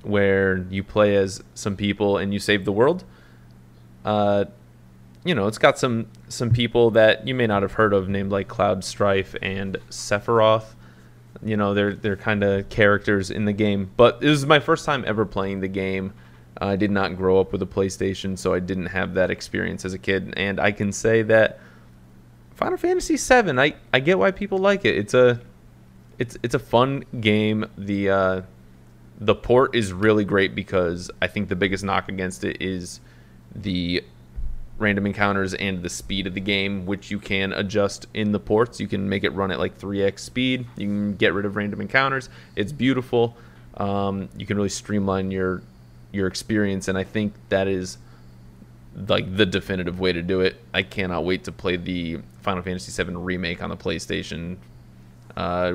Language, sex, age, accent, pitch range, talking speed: English, male, 20-39, American, 90-105 Hz, 190 wpm